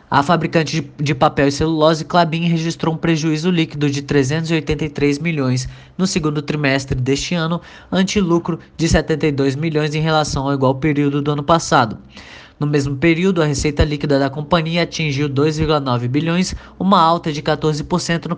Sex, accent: male, Brazilian